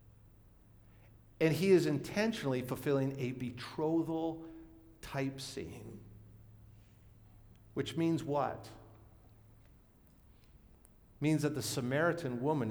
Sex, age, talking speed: male, 50-69, 80 wpm